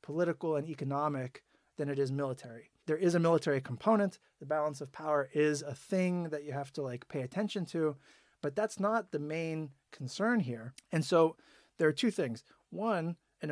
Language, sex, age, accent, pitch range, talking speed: English, male, 30-49, American, 140-175 Hz, 185 wpm